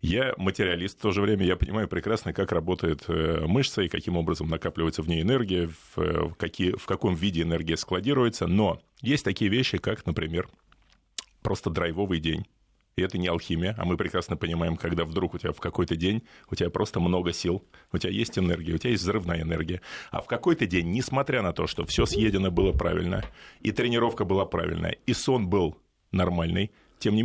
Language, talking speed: Russian, 190 wpm